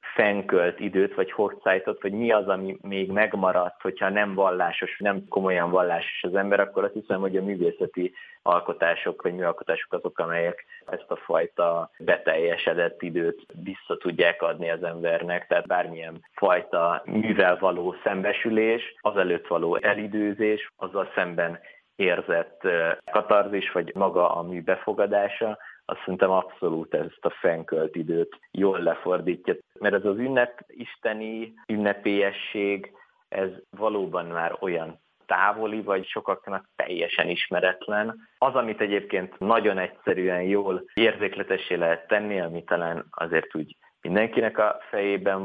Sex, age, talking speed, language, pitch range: male, 30-49, 130 wpm, Hungarian, 85-105 Hz